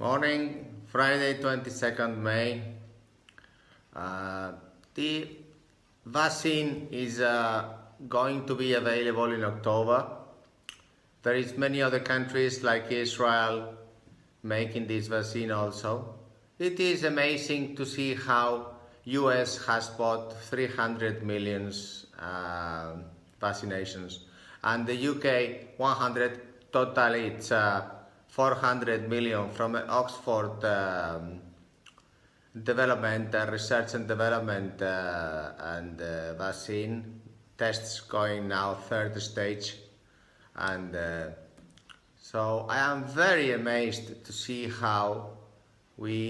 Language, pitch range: English, 100-125 Hz